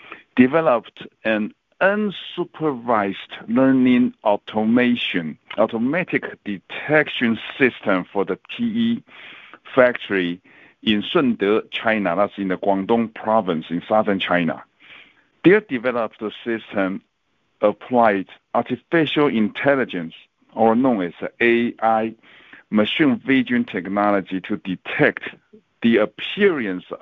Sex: male